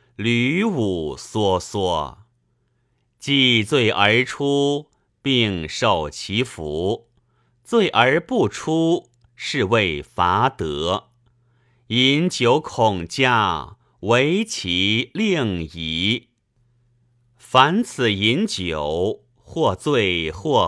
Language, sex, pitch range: Chinese, male, 105-130 Hz